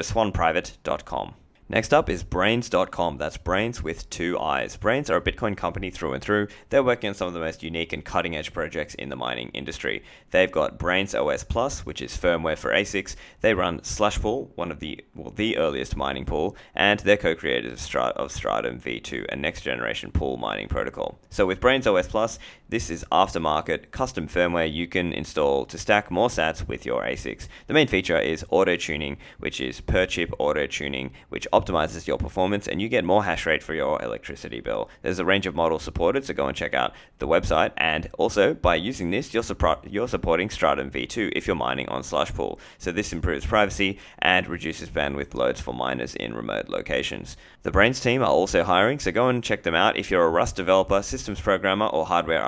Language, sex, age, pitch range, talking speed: English, male, 20-39, 80-105 Hz, 200 wpm